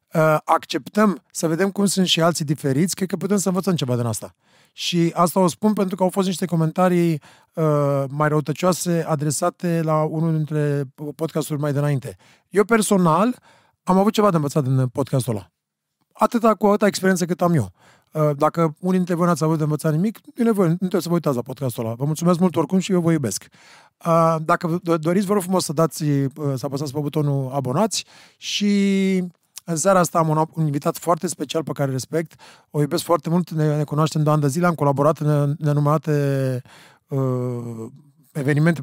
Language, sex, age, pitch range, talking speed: Romanian, male, 30-49, 145-180 Hz, 195 wpm